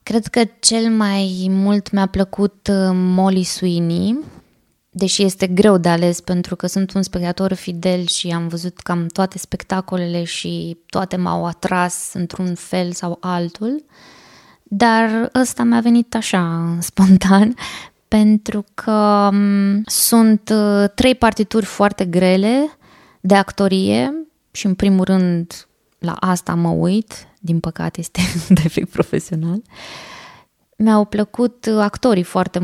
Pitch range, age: 180-215 Hz, 20-39